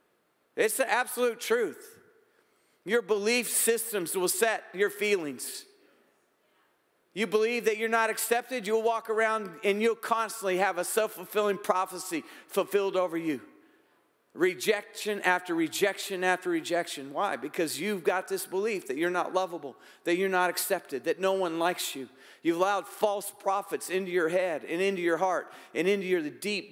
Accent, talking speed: American, 155 wpm